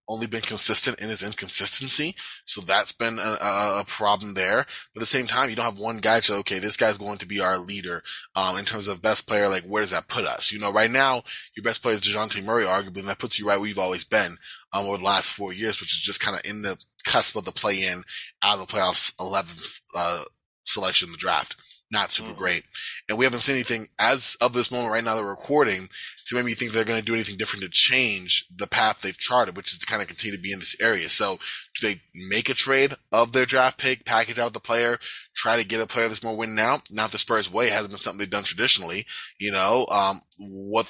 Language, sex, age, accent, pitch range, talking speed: English, male, 20-39, American, 100-120 Hz, 255 wpm